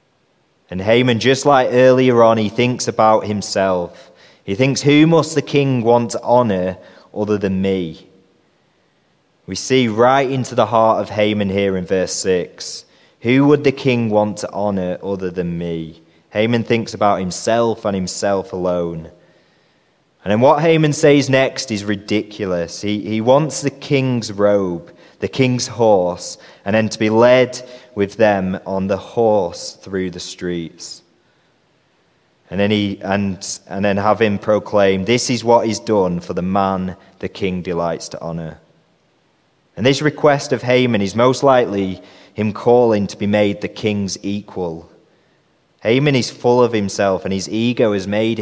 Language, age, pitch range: English, 20-39, 95-120 Hz